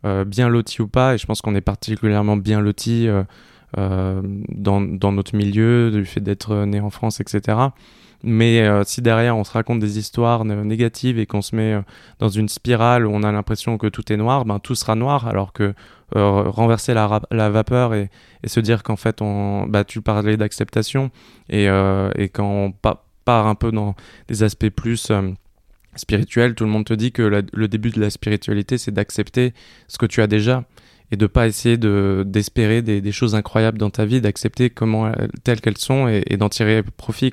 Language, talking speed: French, 215 wpm